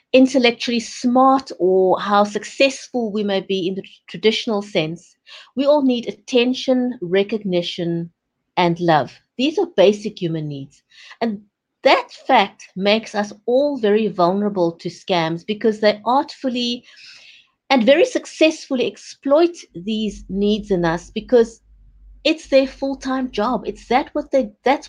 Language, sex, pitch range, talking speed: English, female, 190-255 Hz, 135 wpm